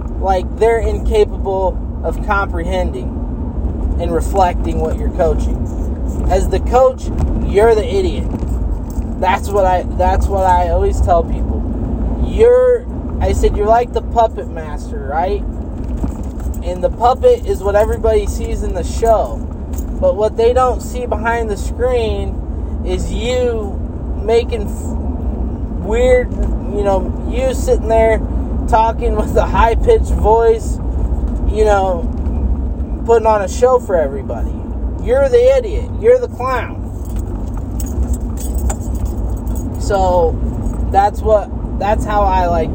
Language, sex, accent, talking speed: English, male, American, 125 wpm